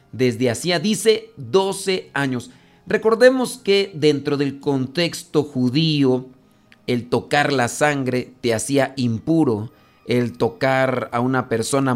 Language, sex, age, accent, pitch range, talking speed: Spanish, male, 40-59, Mexican, 120-155 Hz, 115 wpm